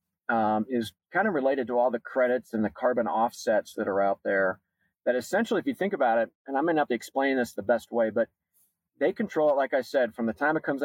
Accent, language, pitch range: American, English, 105-135 Hz